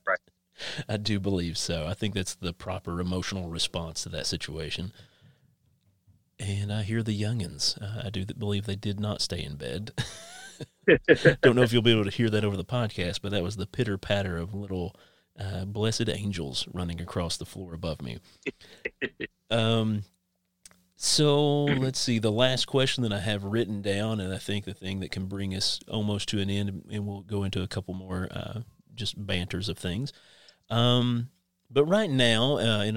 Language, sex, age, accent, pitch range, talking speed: English, male, 30-49, American, 90-115 Hz, 180 wpm